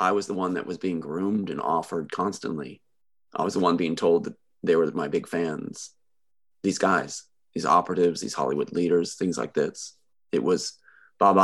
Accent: American